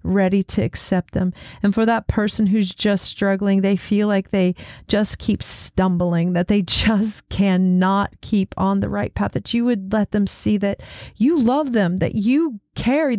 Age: 40-59